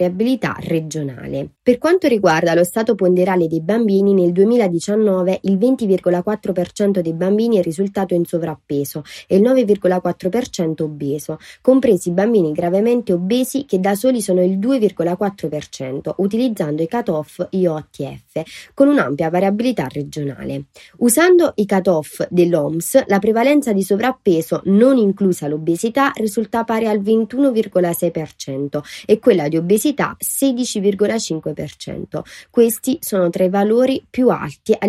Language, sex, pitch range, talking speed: Italian, female, 170-225 Hz, 120 wpm